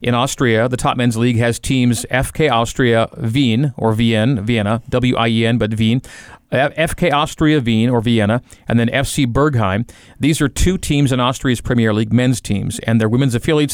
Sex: male